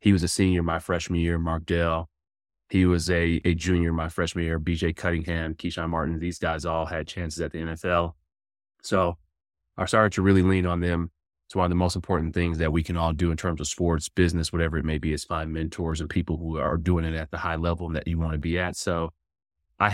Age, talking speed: 30-49, 240 wpm